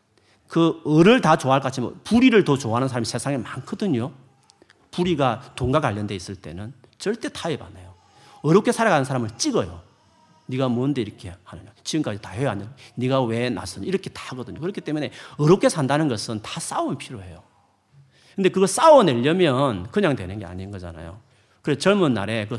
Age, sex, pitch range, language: 40-59, male, 105-155 Hz, Korean